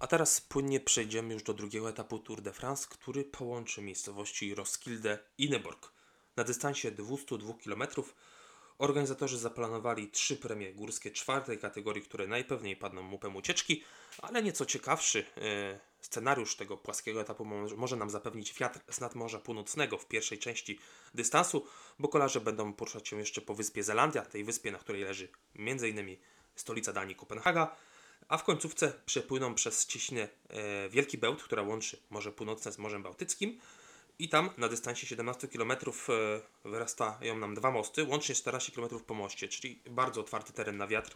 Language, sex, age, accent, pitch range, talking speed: Polish, male, 20-39, native, 105-130 Hz, 155 wpm